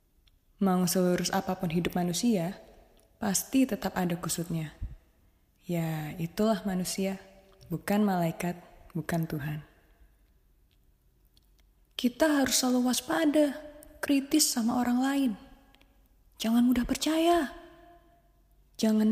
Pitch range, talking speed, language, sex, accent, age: 175-230 Hz, 90 wpm, Indonesian, female, native, 20-39